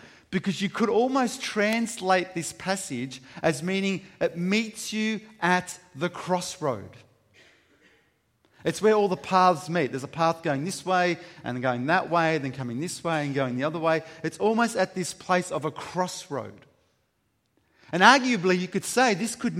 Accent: Australian